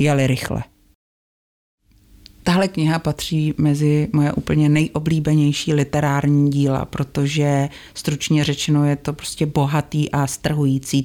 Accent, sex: native, female